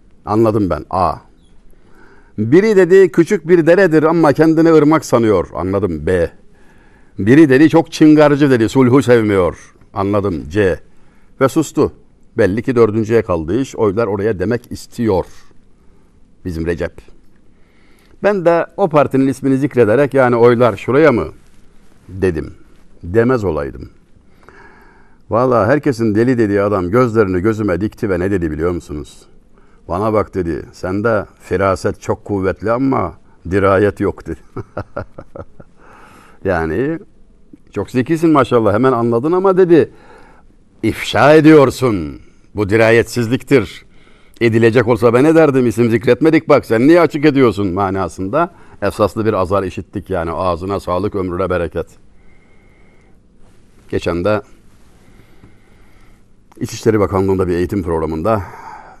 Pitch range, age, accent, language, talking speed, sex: 100-135 Hz, 60-79, native, Turkish, 115 wpm, male